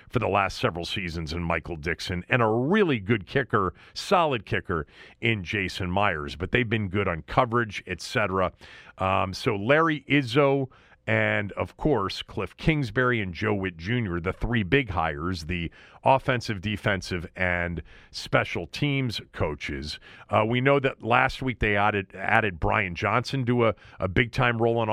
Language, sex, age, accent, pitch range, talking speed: English, male, 40-59, American, 95-125 Hz, 160 wpm